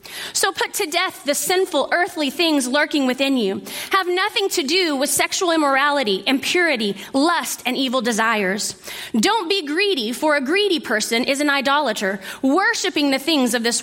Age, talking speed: 30-49, 165 wpm